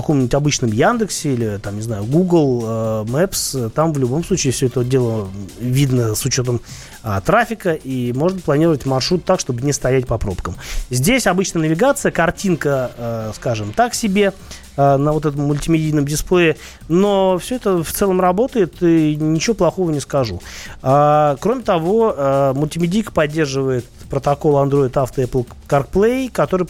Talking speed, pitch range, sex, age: 145 wpm, 125-165 Hz, male, 30-49